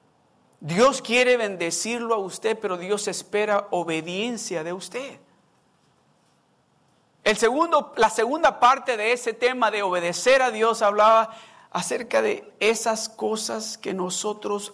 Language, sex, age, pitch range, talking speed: Spanish, male, 50-69, 165-225 Hz, 120 wpm